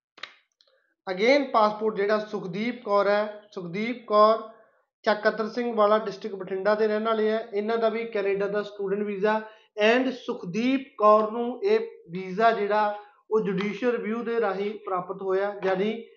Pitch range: 205-230 Hz